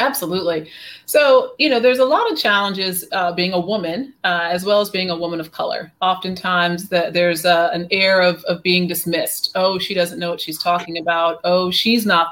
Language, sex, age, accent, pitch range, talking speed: English, female, 30-49, American, 170-195 Hz, 210 wpm